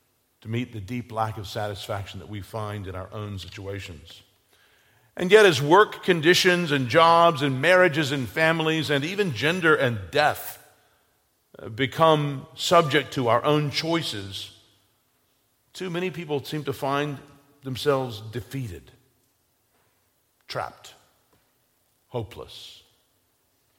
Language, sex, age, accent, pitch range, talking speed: English, male, 50-69, American, 105-155 Hz, 115 wpm